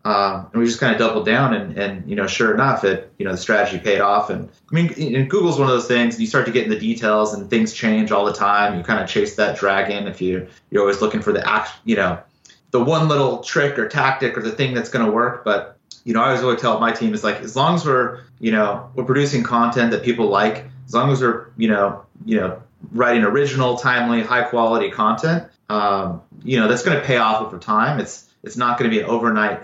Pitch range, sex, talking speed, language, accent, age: 100-125 Hz, male, 260 wpm, English, American, 30-49